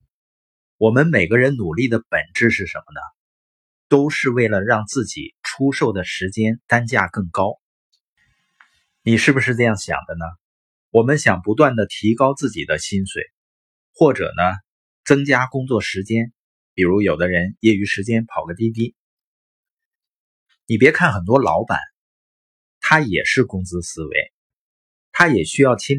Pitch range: 95-135 Hz